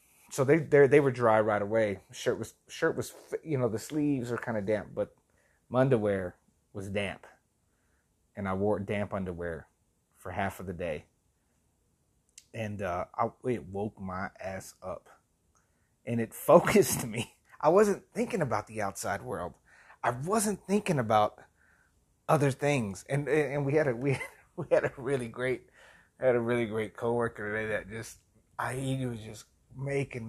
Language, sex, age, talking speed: English, male, 30-49, 170 wpm